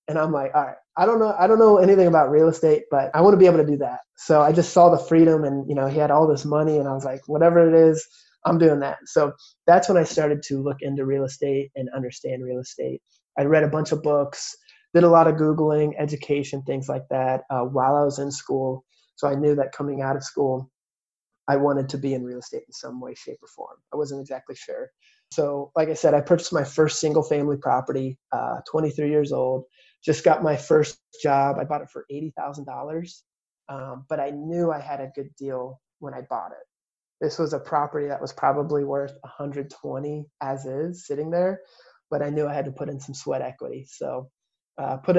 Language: English